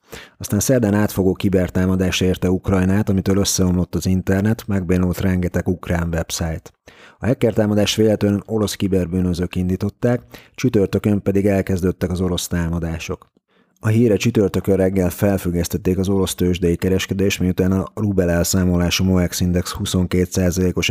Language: Hungarian